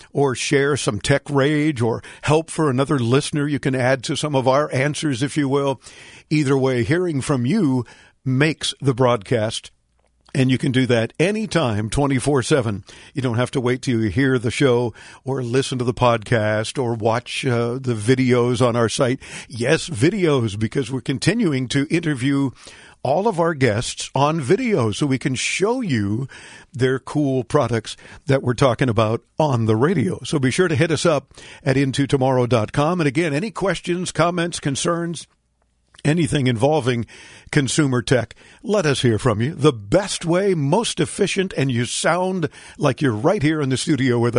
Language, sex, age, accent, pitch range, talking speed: English, male, 50-69, American, 125-155 Hz, 175 wpm